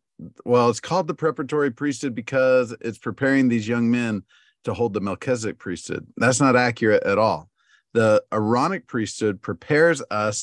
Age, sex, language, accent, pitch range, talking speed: 50-69, male, English, American, 105-125 Hz, 155 wpm